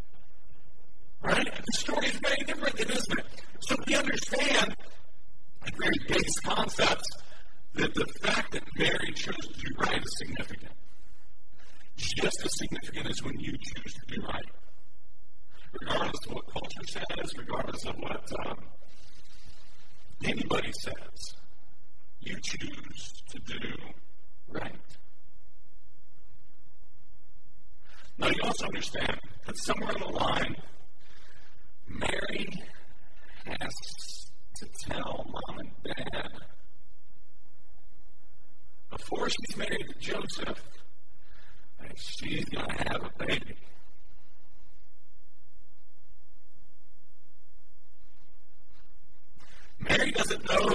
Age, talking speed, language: 50-69, 100 wpm, English